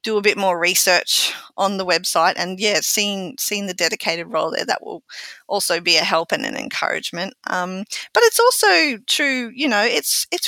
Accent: Australian